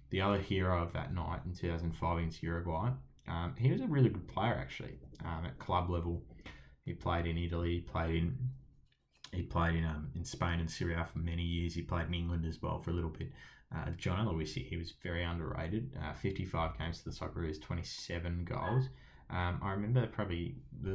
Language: English